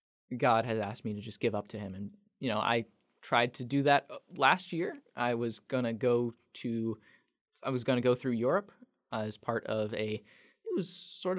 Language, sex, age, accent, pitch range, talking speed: English, male, 20-39, American, 115-140 Hz, 205 wpm